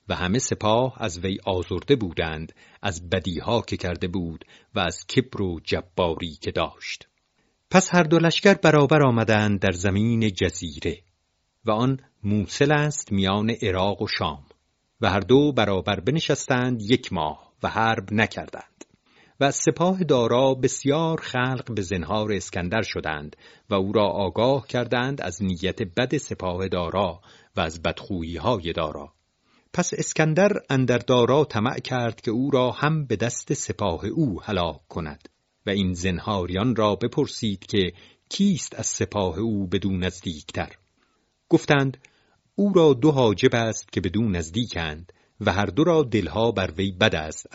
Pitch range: 95-130 Hz